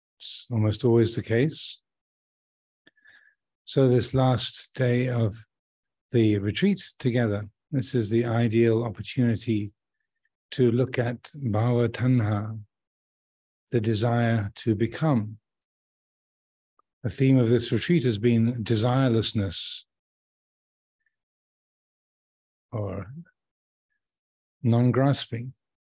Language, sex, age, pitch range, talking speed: English, male, 50-69, 105-125 Hz, 85 wpm